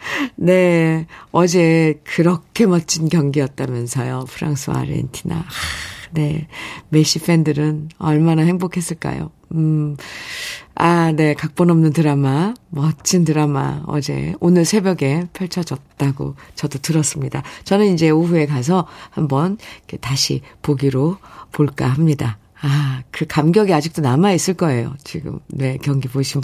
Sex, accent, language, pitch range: female, native, Korean, 150-200 Hz